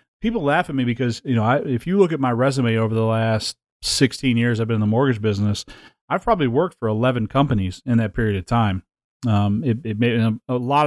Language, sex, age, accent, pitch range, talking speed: English, male, 30-49, American, 110-135 Hz, 230 wpm